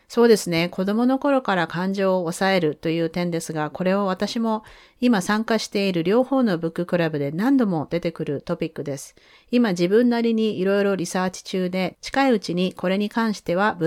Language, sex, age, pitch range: Japanese, female, 40-59, 165-225 Hz